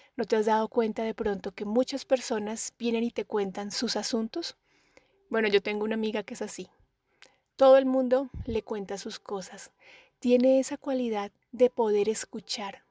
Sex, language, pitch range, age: female, Spanish, 205-255 Hz, 30-49